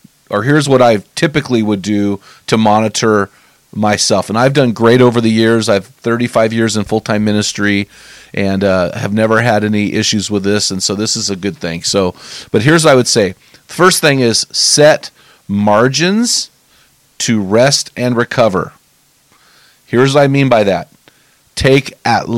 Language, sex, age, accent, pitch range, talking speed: English, male, 40-59, American, 100-125 Hz, 170 wpm